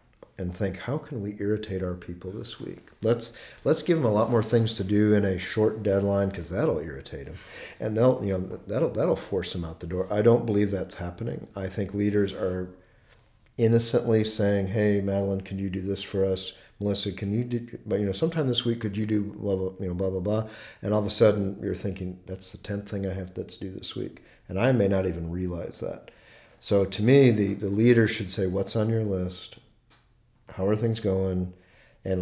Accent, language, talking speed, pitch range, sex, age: American, English, 220 wpm, 95-110 Hz, male, 50-69